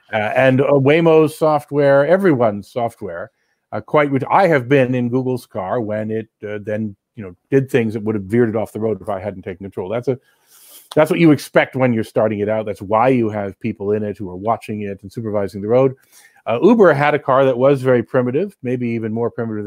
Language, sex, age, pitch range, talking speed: English, male, 40-59, 105-135 Hz, 230 wpm